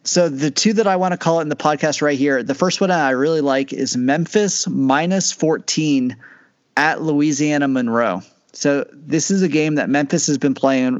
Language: English